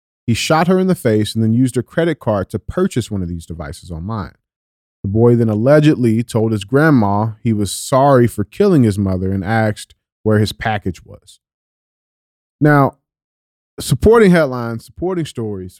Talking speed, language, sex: 165 wpm, English, male